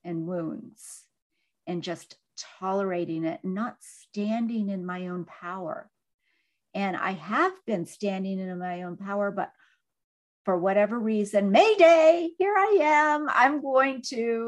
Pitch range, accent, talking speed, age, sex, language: 195-245 Hz, American, 135 wpm, 50-69, female, English